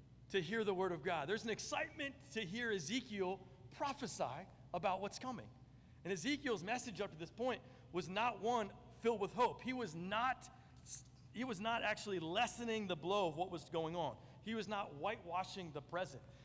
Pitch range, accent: 160-240 Hz, American